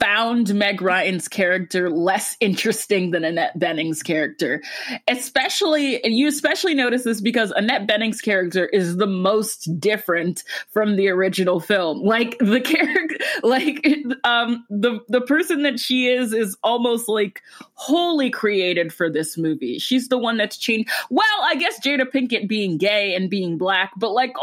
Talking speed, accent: 155 wpm, American